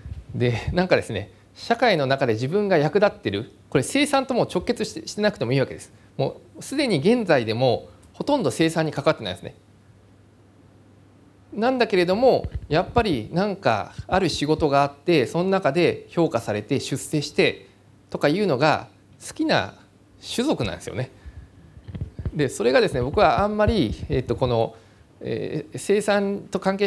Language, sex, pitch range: Japanese, male, 105-175 Hz